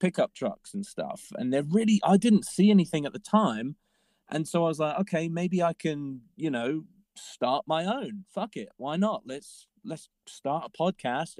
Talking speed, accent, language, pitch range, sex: 195 wpm, British, English, 140-195 Hz, male